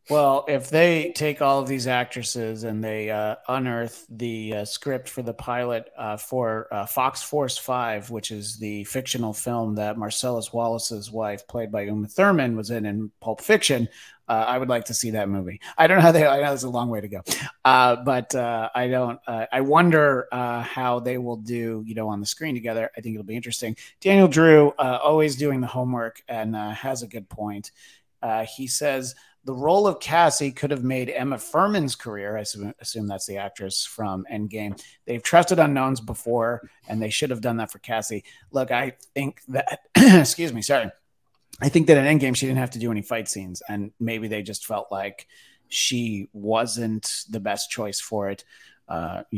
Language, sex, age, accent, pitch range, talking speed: English, male, 30-49, American, 110-135 Hz, 205 wpm